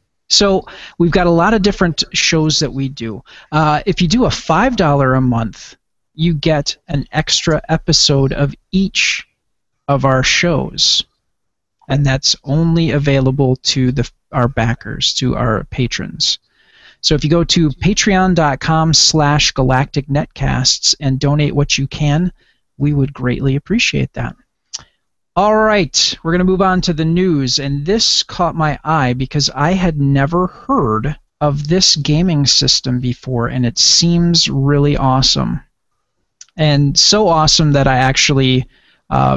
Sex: male